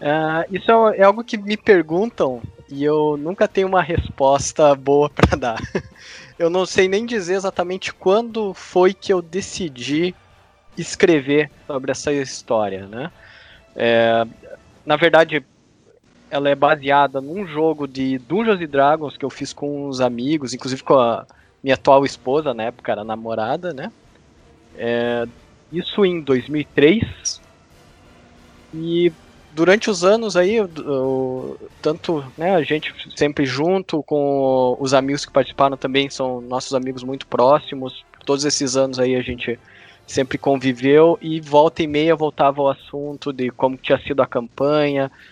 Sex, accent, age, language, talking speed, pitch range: male, Brazilian, 20-39, Portuguese, 145 wpm, 130-165 Hz